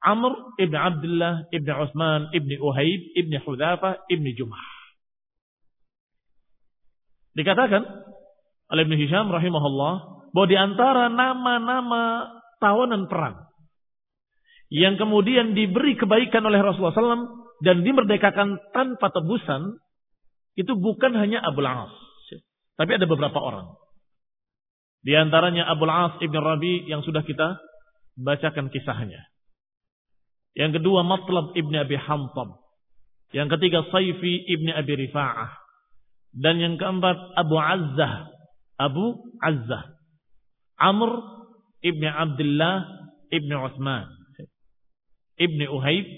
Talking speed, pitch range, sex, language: 95 wpm, 155-200 Hz, male, Indonesian